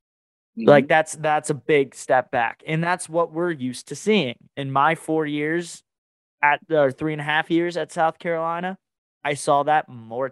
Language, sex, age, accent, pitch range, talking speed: English, male, 20-39, American, 125-160 Hz, 185 wpm